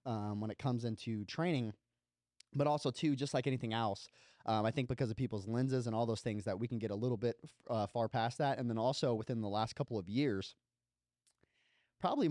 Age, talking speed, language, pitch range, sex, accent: 20-39, 220 wpm, English, 110-130 Hz, male, American